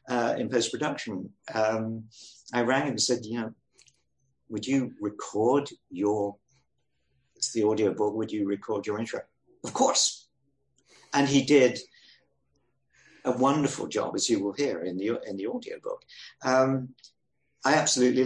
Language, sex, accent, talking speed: English, male, British, 150 wpm